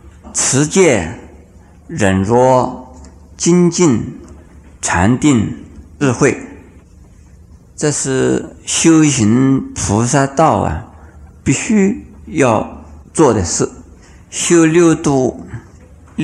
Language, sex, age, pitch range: Chinese, male, 50-69, 85-140 Hz